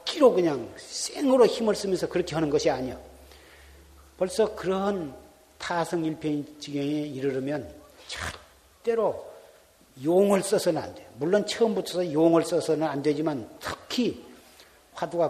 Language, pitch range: Korean, 135-180 Hz